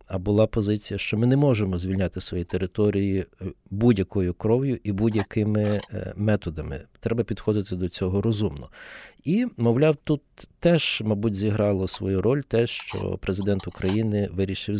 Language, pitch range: Ukrainian, 100-130 Hz